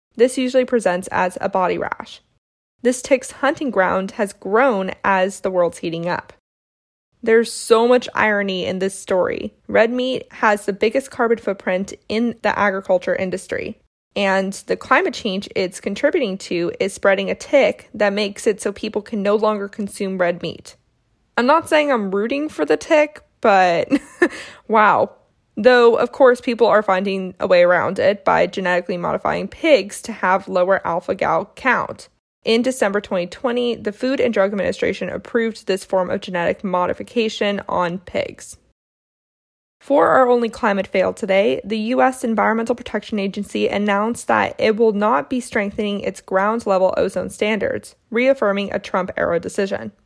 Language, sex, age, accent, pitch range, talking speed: English, female, 20-39, American, 195-240 Hz, 155 wpm